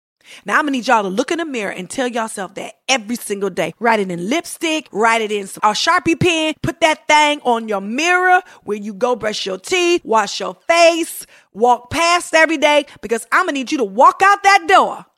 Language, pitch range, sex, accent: English, 215-325 Hz, female, American